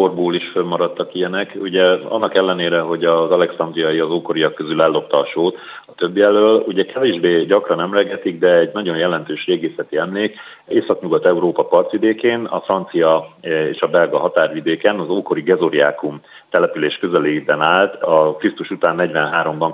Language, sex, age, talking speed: Hungarian, male, 40-59, 145 wpm